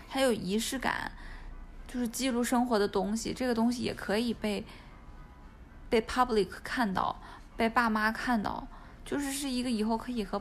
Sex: female